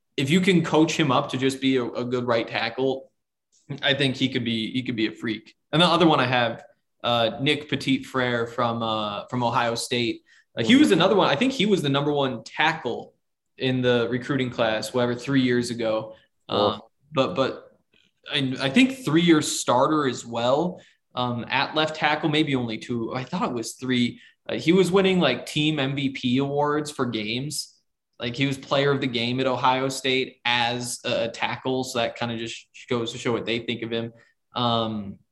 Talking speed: 205 wpm